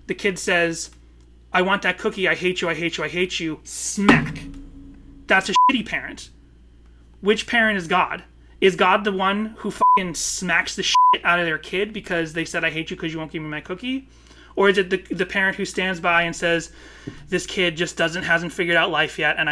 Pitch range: 150-185 Hz